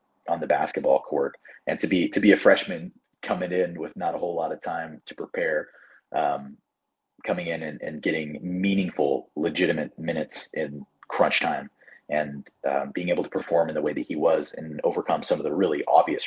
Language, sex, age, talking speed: English, male, 30-49, 195 wpm